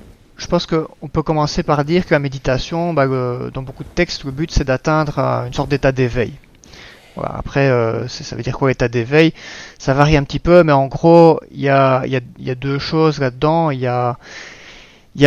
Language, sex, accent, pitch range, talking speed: French, male, French, 125-150 Hz, 215 wpm